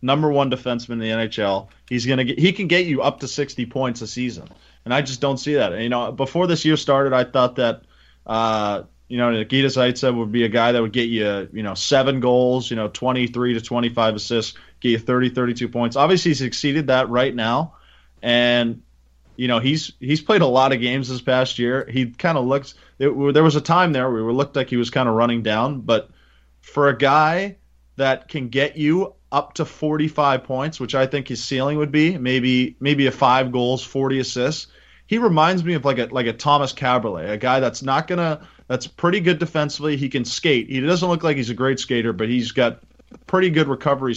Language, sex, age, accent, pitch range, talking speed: English, male, 30-49, American, 120-145 Hz, 225 wpm